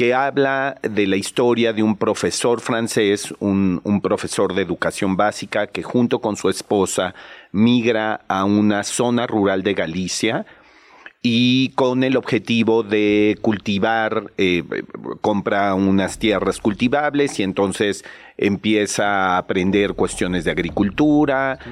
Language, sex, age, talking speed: Spanish, male, 40-59, 125 wpm